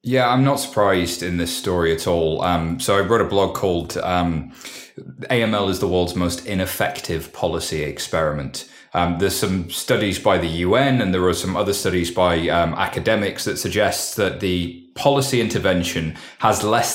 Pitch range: 90-130 Hz